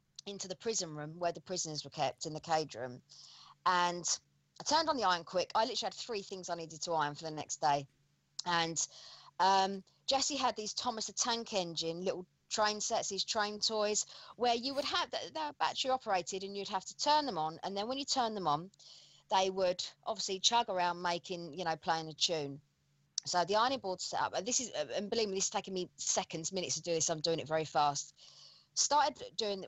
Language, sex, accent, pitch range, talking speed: English, female, British, 170-245 Hz, 220 wpm